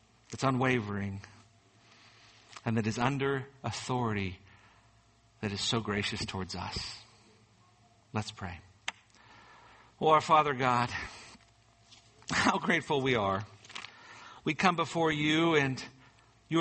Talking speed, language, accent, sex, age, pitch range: 105 wpm, English, American, male, 50-69, 115-150 Hz